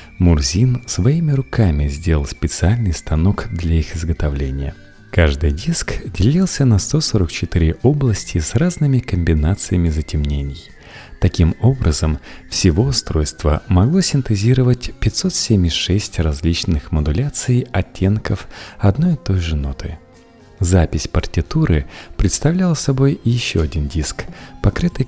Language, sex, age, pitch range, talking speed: Russian, male, 40-59, 80-115 Hz, 100 wpm